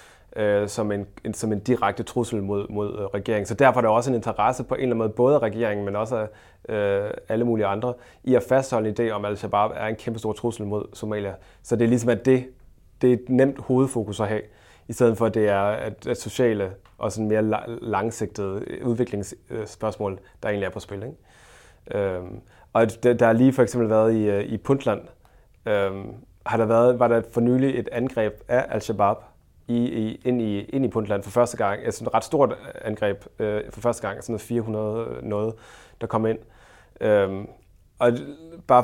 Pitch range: 105-120 Hz